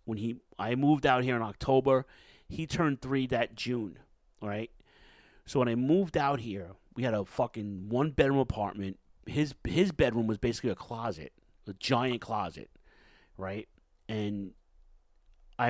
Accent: American